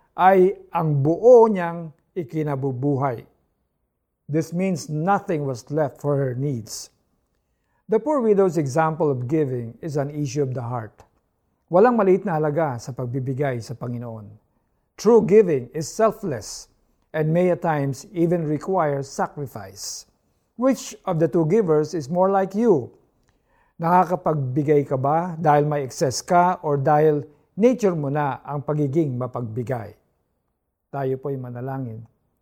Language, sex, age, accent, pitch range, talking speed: Filipino, male, 50-69, native, 135-180 Hz, 130 wpm